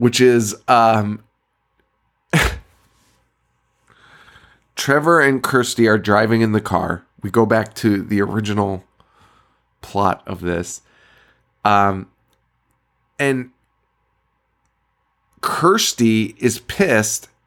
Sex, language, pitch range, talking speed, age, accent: male, English, 100-125 Hz, 85 wpm, 20-39, American